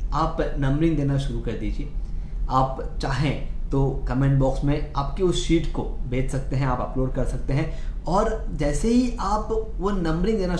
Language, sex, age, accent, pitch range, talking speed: Hindi, male, 20-39, native, 115-165 Hz, 175 wpm